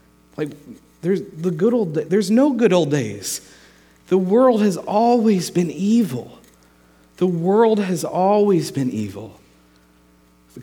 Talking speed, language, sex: 130 wpm, English, male